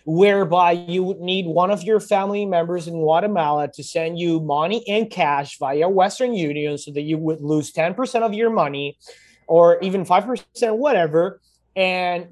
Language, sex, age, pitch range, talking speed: English, male, 30-49, 160-205 Hz, 165 wpm